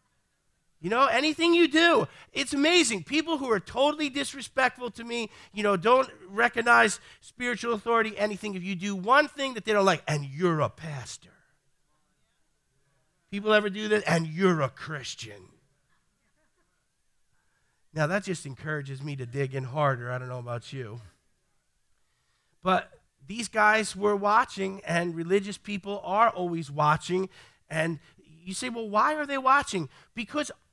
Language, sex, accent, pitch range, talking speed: English, male, American, 180-270 Hz, 150 wpm